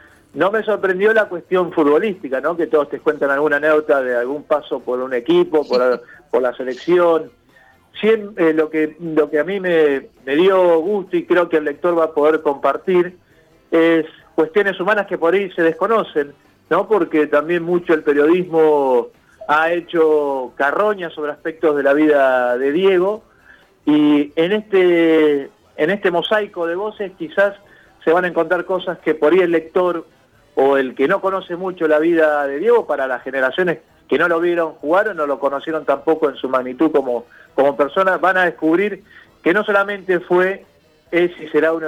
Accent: Argentinian